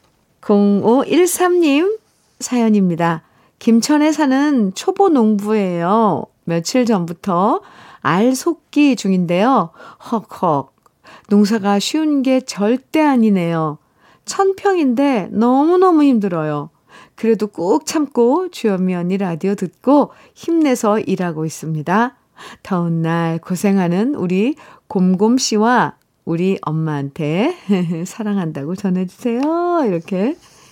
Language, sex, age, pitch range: Korean, female, 50-69, 185-275 Hz